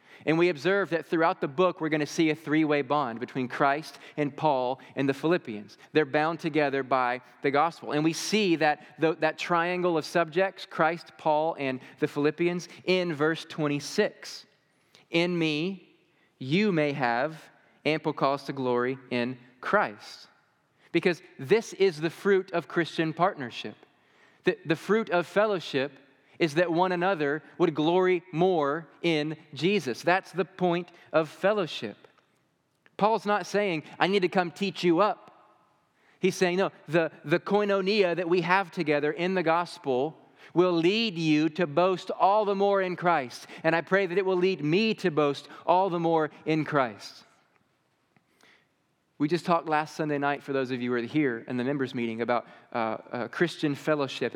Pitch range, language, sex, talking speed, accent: 145-180 Hz, English, male, 170 wpm, American